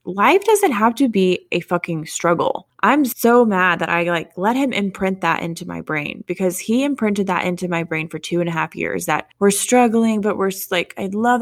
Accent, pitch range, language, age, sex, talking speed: American, 175-230 Hz, English, 20-39, female, 220 wpm